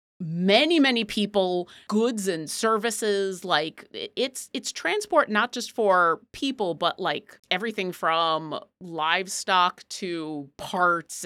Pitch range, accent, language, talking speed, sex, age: 190-245 Hz, American, English, 110 wpm, female, 30-49